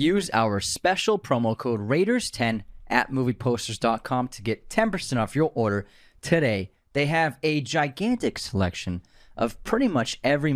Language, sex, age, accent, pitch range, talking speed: English, male, 30-49, American, 110-155 Hz, 135 wpm